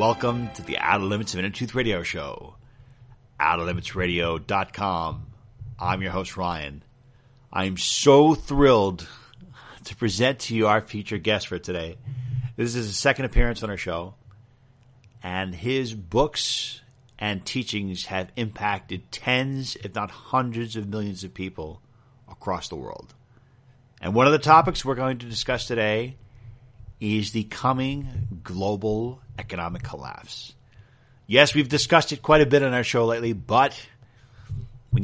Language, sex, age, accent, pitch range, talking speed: English, male, 40-59, American, 100-125 Hz, 145 wpm